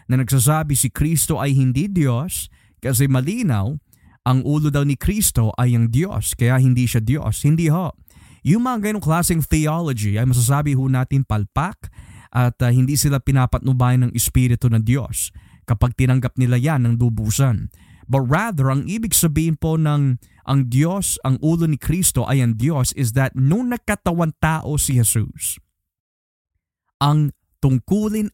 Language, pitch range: Filipino, 120-160 Hz